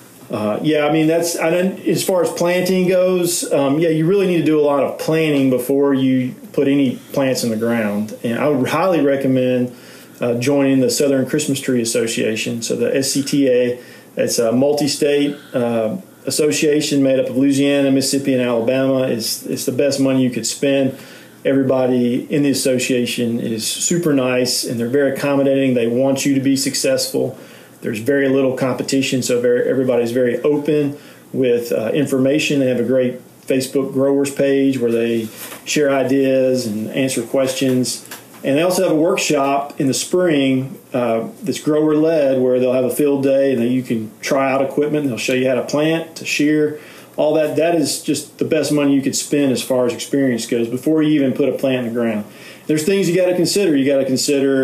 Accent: American